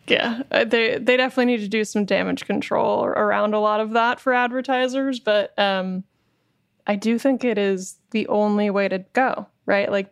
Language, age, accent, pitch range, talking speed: English, 20-39, American, 195-235 Hz, 185 wpm